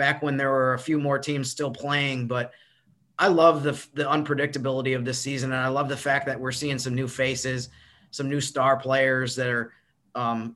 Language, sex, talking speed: English, male, 210 wpm